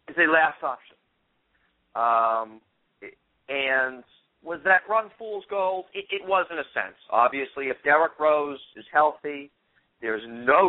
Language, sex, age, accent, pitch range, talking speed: English, male, 50-69, American, 130-180 Hz, 140 wpm